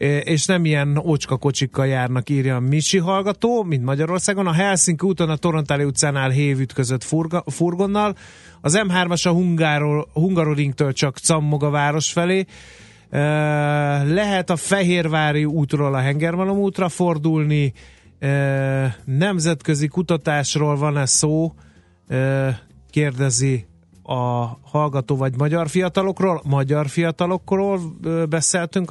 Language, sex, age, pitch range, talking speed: Hungarian, male, 30-49, 135-170 Hz, 110 wpm